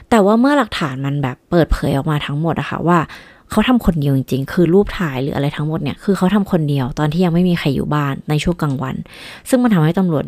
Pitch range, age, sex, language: 150-195 Hz, 20-39, female, Thai